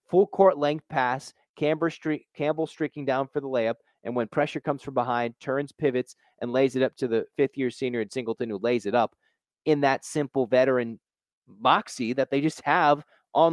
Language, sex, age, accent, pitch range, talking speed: English, male, 30-49, American, 120-160 Hz, 195 wpm